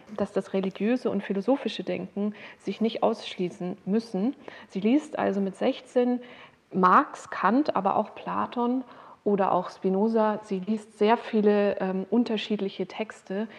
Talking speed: 135 wpm